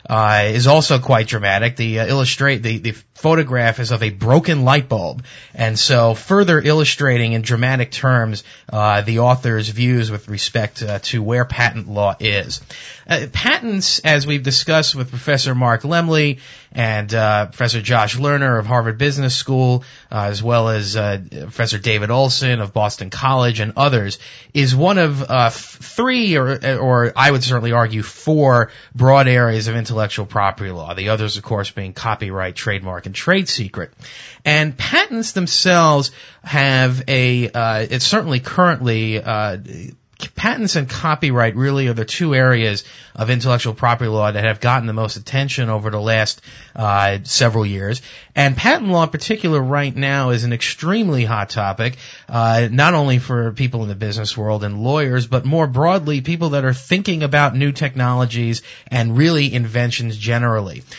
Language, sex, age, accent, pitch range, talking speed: English, male, 30-49, American, 110-140 Hz, 165 wpm